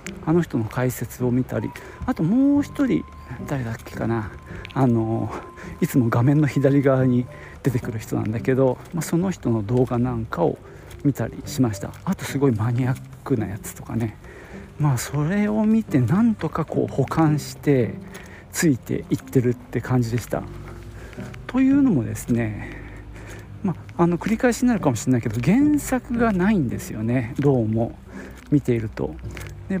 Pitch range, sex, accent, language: 115-165 Hz, male, native, Japanese